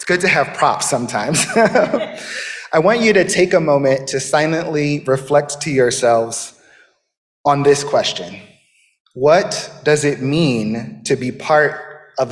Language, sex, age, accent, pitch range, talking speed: English, male, 30-49, American, 125-150 Hz, 140 wpm